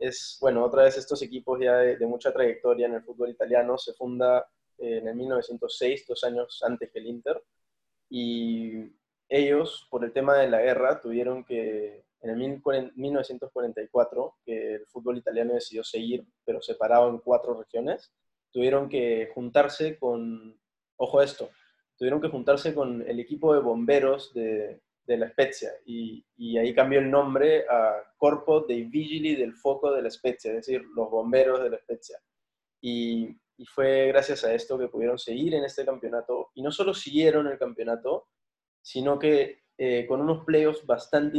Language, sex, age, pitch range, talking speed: Spanish, male, 20-39, 120-145 Hz, 170 wpm